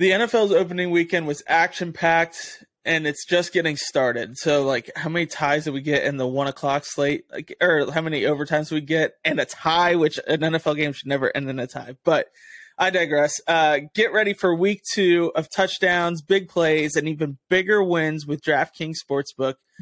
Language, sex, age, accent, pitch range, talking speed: English, male, 20-39, American, 150-180 Hz, 195 wpm